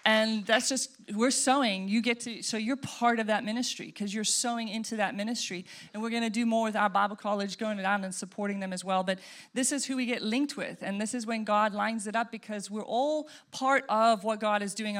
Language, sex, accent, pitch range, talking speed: English, female, American, 205-250 Hz, 250 wpm